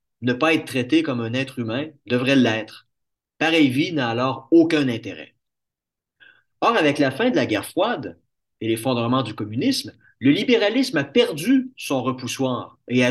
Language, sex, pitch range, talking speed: French, male, 130-170 Hz, 165 wpm